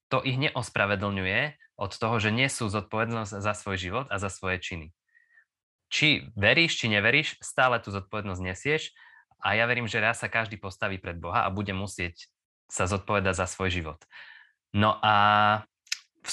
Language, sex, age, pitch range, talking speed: Slovak, male, 20-39, 95-120 Hz, 160 wpm